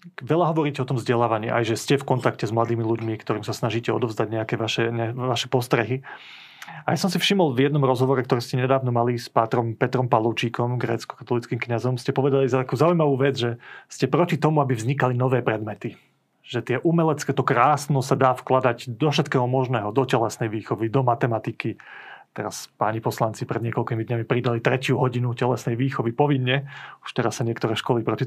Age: 30-49